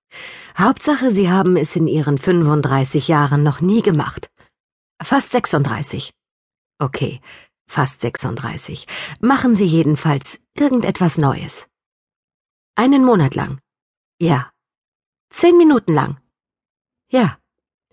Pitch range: 150-235 Hz